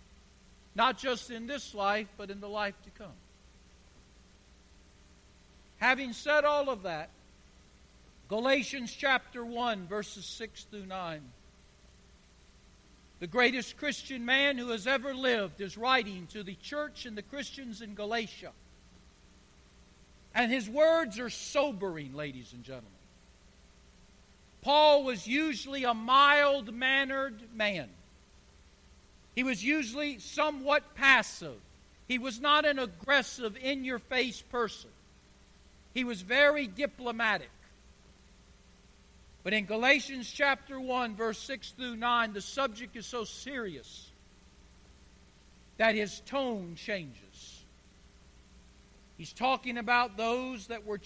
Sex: male